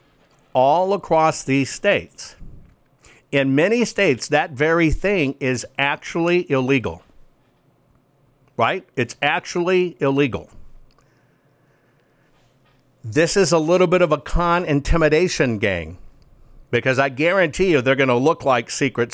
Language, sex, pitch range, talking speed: English, male, 130-155 Hz, 115 wpm